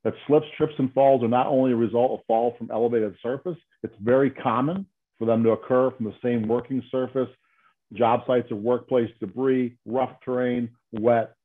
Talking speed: 185 wpm